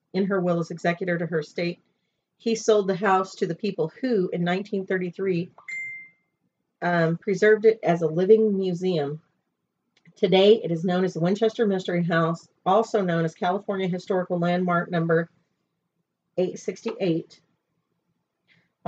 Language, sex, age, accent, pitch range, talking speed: English, female, 40-59, American, 165-200 Hz, 135 wpm